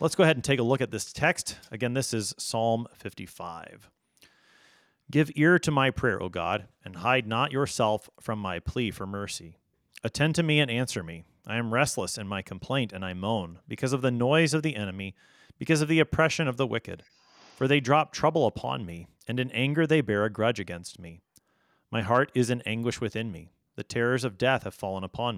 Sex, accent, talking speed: male, American, 210 wpm